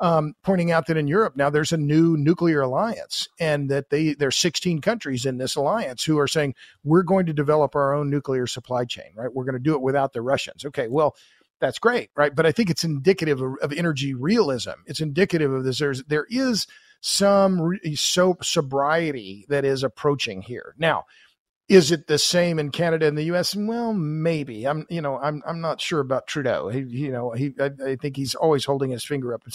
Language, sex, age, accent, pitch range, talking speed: English, male, 50-69, American, 135-165 Hz, 210 wpm